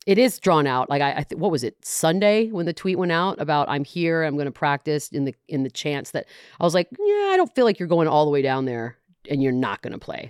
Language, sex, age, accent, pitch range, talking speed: English, female, 40-59, American, 145-210 Hz, 295 wpm